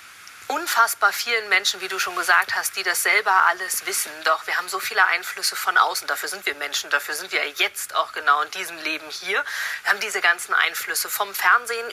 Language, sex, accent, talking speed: German, female, German, 210 wpm